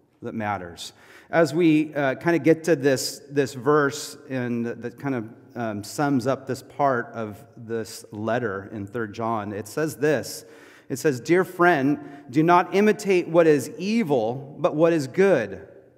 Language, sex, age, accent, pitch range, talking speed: English, male, 30-49, American, 120-170 Hz, 160 wpm